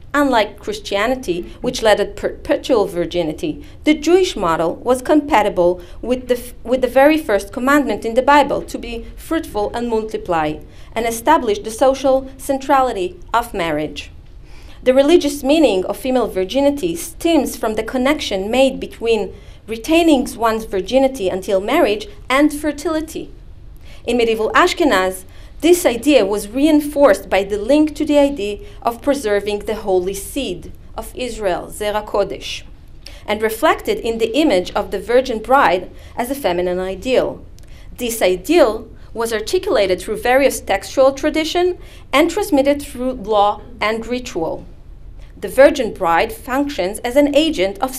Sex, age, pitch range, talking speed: female, 40-59, 205-285 Hz, 140 wpm